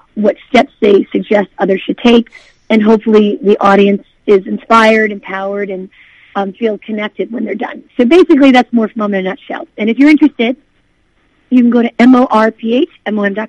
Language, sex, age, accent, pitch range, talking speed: English, female, 40-59, American, 205-255 Hz, 170 wpm